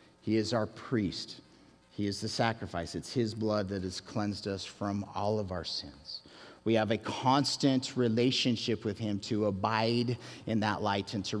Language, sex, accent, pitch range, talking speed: English, male, American, 100-130 Hz, 180 wpm